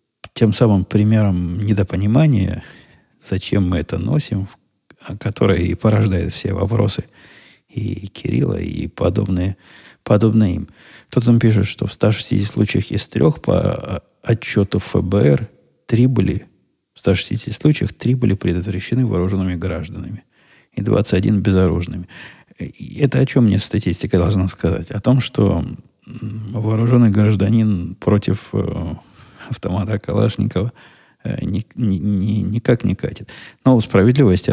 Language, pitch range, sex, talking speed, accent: Russian, 90-115 Hz, male, 120 wpm, native